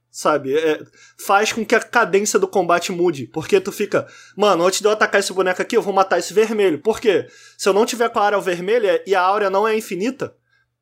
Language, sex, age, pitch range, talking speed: Portuguese, male, 20-39, 180-255 Hz, 235 wpm